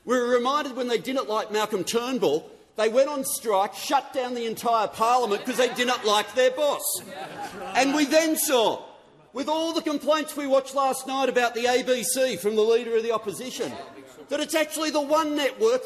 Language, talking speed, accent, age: English, 195 wpm, Australian, 40-59